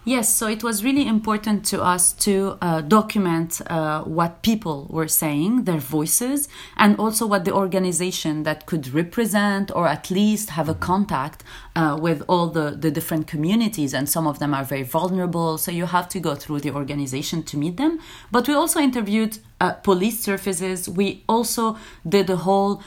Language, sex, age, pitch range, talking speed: English, female, 30-49, 165-215 Hz, 180 wpm